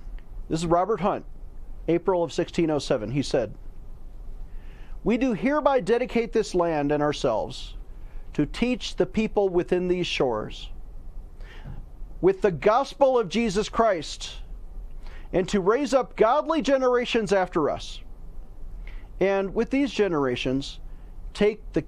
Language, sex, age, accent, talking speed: English, male, 40-59, American, 120 wpm